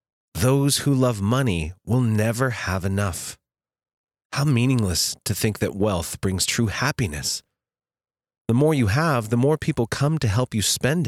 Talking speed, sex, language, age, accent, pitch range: 155 wpm, male, English, 30-49, American, 85-120 Hz